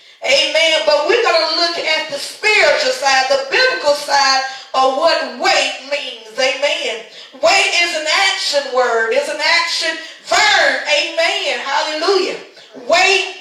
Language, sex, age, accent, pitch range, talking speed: English, female, 40-59, American, 290-360 Hz, 135 wpm